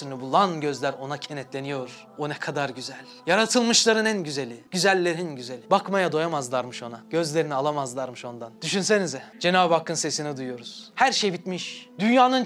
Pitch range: 155-230 Hz